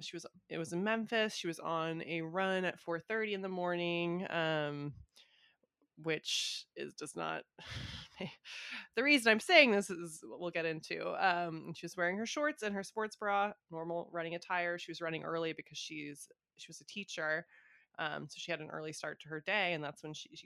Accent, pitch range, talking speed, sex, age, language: American, 150-180 Hz, 200 wpm, female, 20-39, English